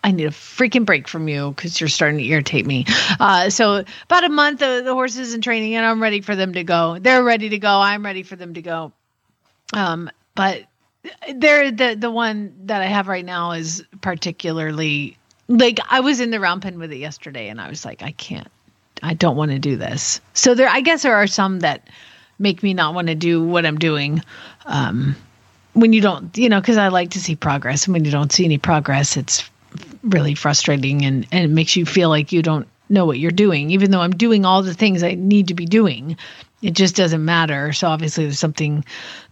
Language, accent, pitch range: English, American, 160-230 Hz